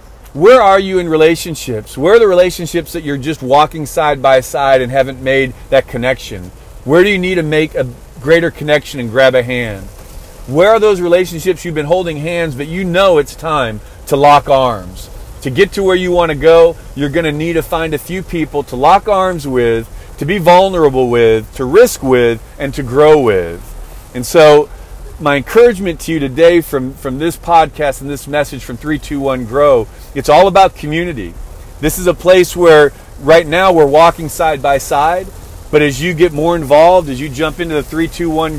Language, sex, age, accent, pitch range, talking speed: English, male, 40-59, American, 130-170 Hz, 195 wpm